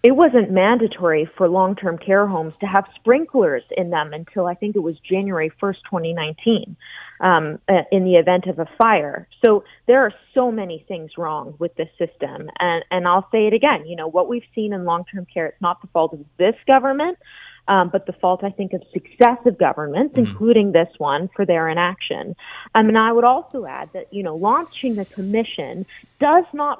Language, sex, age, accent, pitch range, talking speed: English, female, 30-49, American, 170-220 Hz, 195 wpm